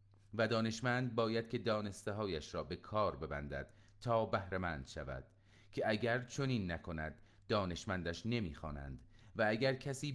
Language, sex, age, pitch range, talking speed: Persian, male, 40-59, 85-110 Hz, 130 wpm